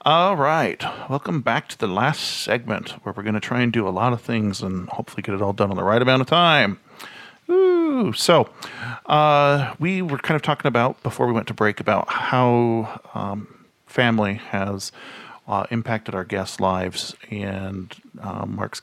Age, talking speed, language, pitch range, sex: 40-59, 185 wpm, English, 105-145 Hz, male